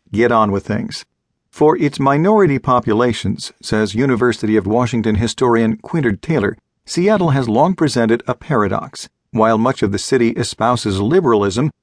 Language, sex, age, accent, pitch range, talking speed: English, male, 50-69, American, 110-140 Hz, 140 wpm